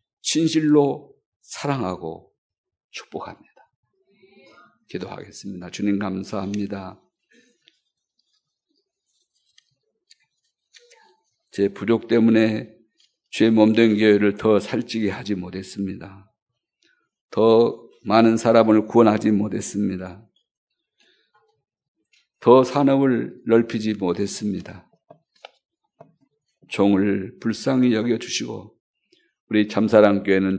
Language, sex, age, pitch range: Korean, male, 50-69, 105-165 Hz